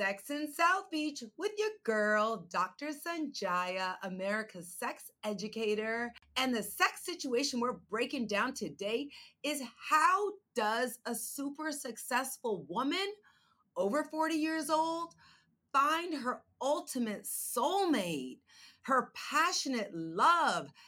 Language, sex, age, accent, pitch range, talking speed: English, female, 30-49, American, 215-300 Hz, 110 wpm